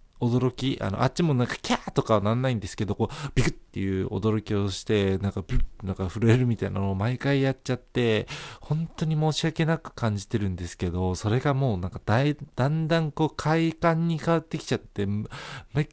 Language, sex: Japanese, male